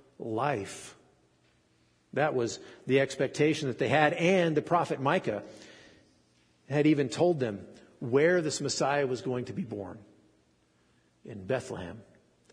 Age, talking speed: 50-69, 125 wpm